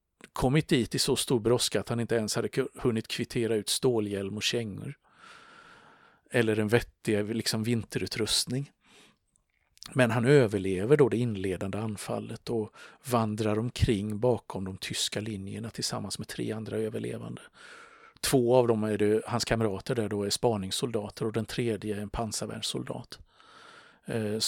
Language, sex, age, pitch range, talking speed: Swedish, male, 50-69, 105-120 Hz, 140 wpm